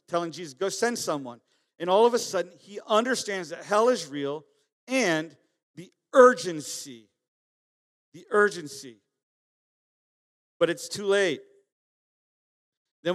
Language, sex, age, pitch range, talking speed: English, male, 50-69, 150-195 Hz, 120 wpm